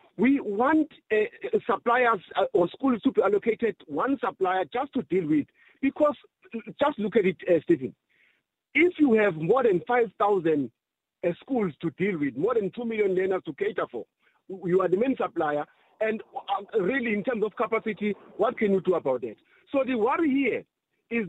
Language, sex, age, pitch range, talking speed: English, male, 50-69, 190-260 Hz, 180 wpm